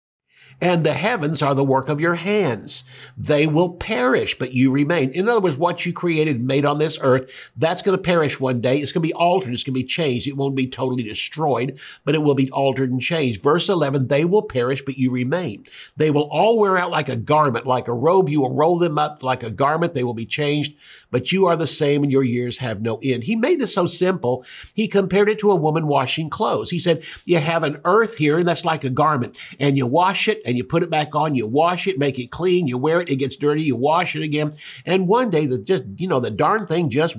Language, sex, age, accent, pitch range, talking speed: English, male, 50-69, American, 130-170 Hz, 250 wpm